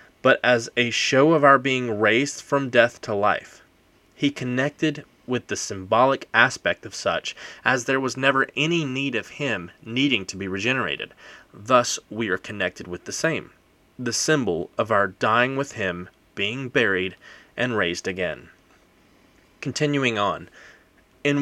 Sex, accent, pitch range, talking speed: male, American, 110-140 Hz, 150 wpm